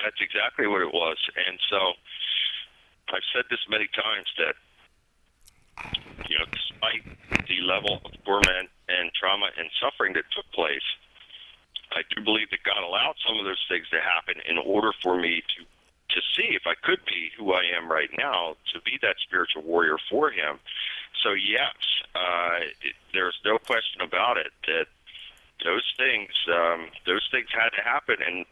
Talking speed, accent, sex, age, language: 170 wpm, American, male, 50-69, English